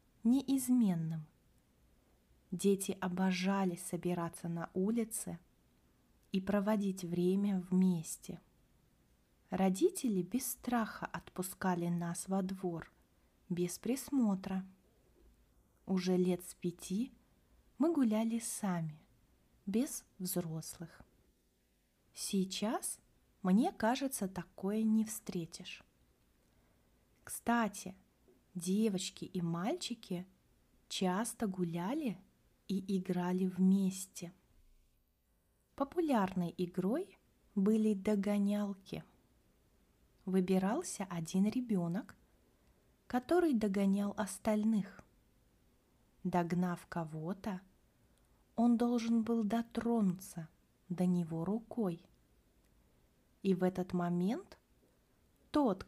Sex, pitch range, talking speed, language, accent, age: female, 175-215 Hz, 70 wpm, Russian, native, 30-49